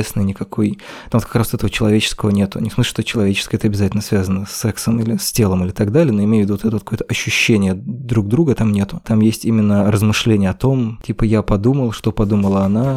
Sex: male